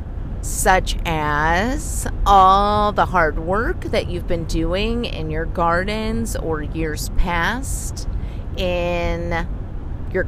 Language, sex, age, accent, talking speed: English, female, 30-49, American, 105 wpm